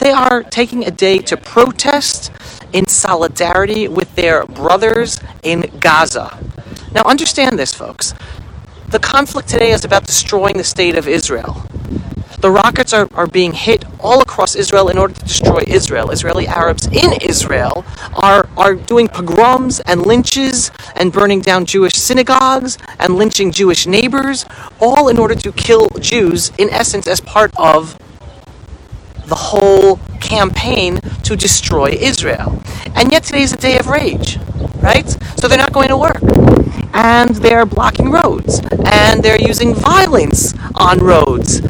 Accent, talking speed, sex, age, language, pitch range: American, 150 wpm, male, 40-59, English, 185-265 Hz